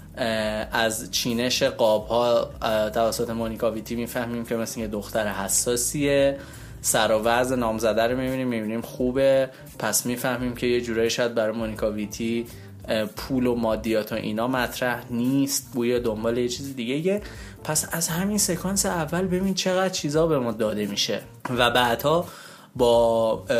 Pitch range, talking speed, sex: 115-145 Hz, 140 wpm, male